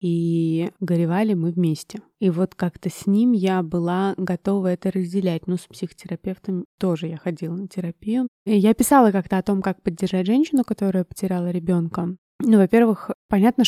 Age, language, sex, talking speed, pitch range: 20-39, Russian, female, 160 wpm, 190-225 Hz